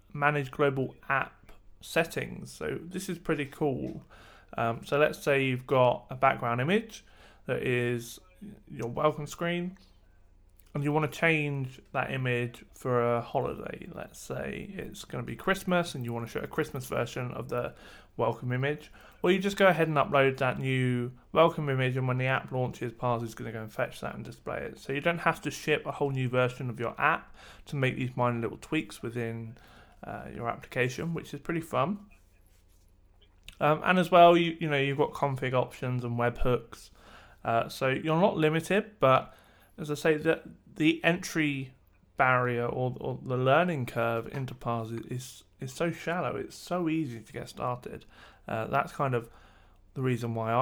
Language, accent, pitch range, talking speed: English, British, 120-150 Hz, 185 wpm